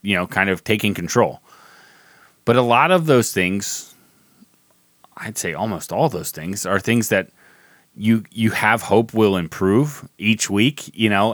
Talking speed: 165 wpm